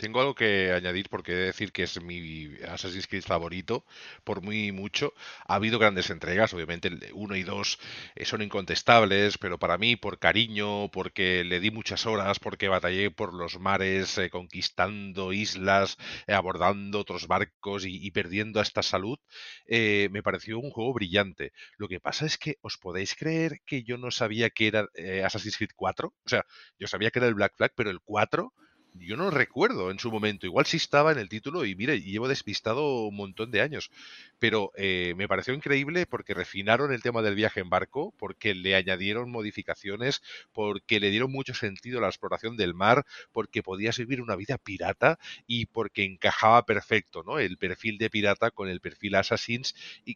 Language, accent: Spanish, Spanish